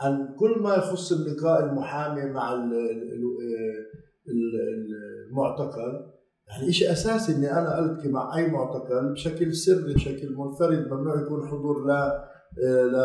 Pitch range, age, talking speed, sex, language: 130-180 Hz, 50-69, 120 wpm, male, Arabic